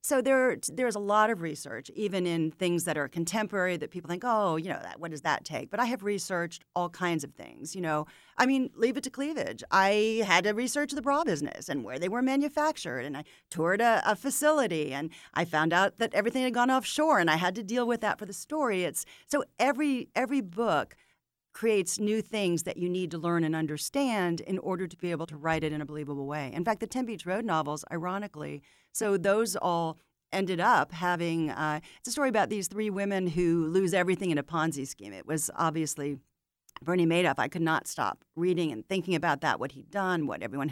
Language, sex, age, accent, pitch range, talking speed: English, female, 40-59, American, 160-220 Hz, 225 wpm